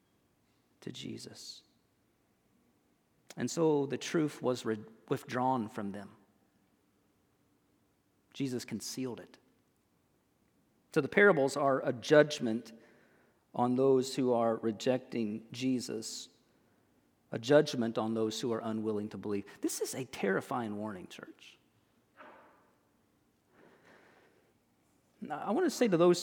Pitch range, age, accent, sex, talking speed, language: 115-150 Hz, 40-59, American, male, 110 wpm, English